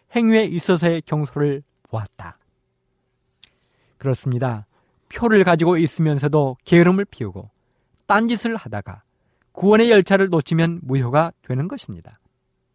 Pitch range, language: 130-195 Hz, Korean